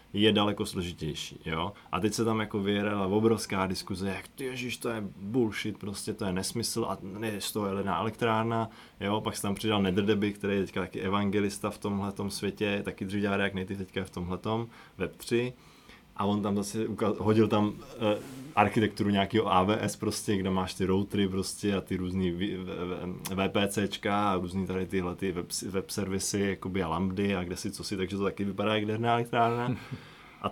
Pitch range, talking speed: 95-115 Hz, 195 wpm